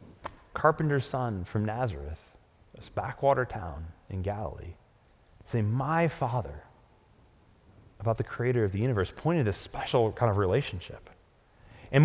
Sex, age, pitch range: male, 30-49, 115-150 Hz